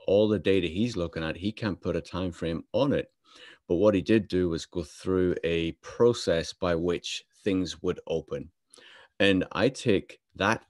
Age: 30-49